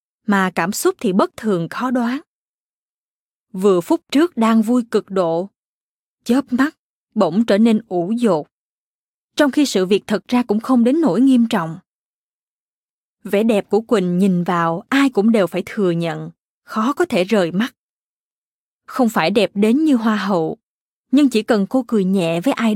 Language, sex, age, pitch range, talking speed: Vietnamese, female, 20-39, 195-250 Hz, 175 wpm